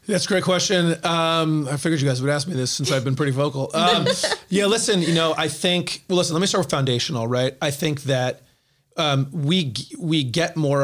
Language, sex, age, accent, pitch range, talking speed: English, male, 30-49, American, 130-165 Hz, 225 wpm